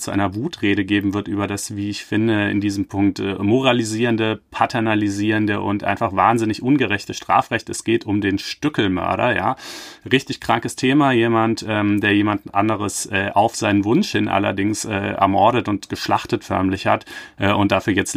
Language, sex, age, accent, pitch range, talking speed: German, male, 30-49, German, 95-115 Hz, 150 wpm